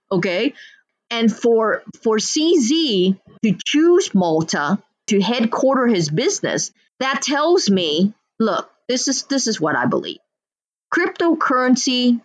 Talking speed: 120 wpm